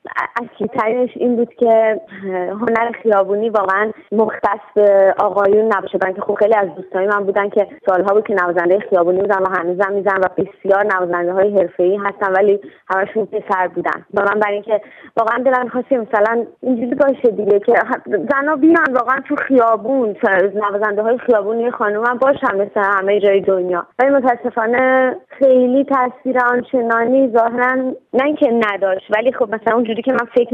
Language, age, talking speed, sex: Persian, 20-39, 155 wpm, female